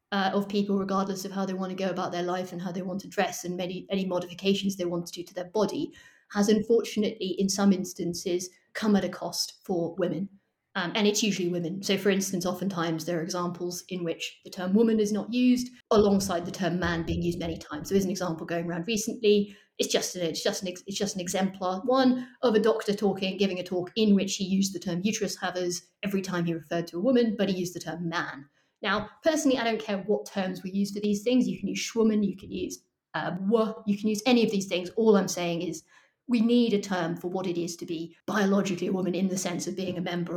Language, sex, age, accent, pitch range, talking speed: English, female, 30-49, British, 175-210 Hz, 240 wpm